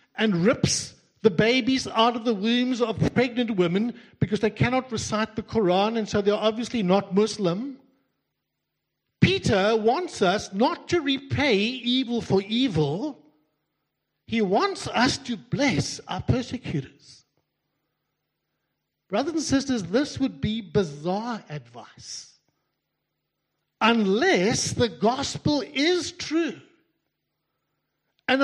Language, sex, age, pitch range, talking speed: English, male, 60-79, 180-255 Hz, 110 wpm